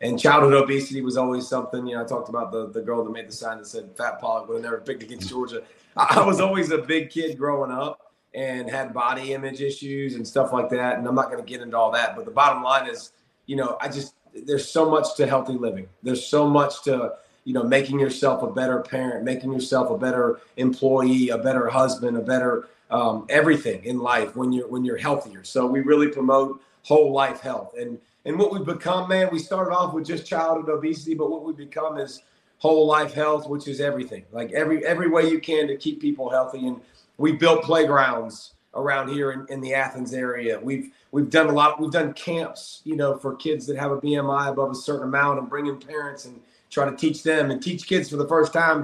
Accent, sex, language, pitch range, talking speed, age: American, male, English, 130-160 Hz, 230 wpm, 30-49